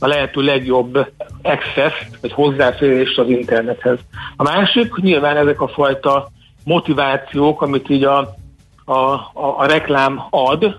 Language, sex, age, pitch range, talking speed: Hungarian, male, 60-79, 125-145 Hz, 130 wpm